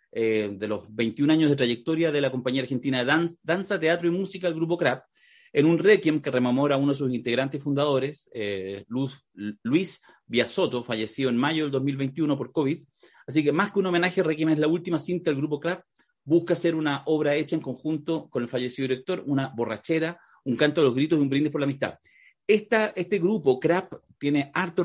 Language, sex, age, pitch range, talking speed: Spanish, male, 40-59, 130-165 Hz, 210 wpm